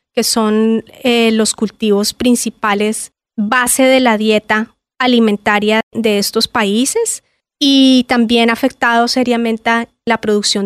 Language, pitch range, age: English, 220-260 Hz, 30-49